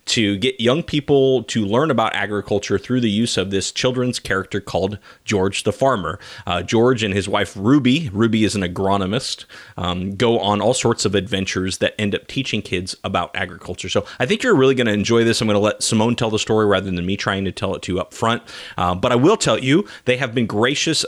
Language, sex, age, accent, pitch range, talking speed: English, male, 30-49, American, 100-125 Hz, 230 wpm